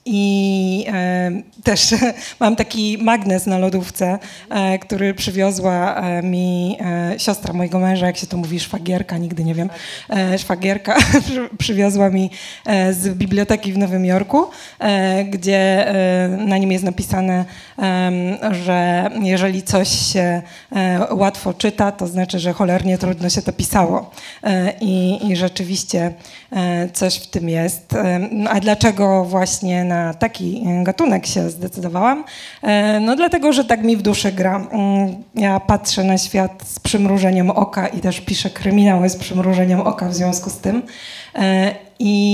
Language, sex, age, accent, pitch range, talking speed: Polish, female, 20-39, native, 185-210 Hz, 125 wpm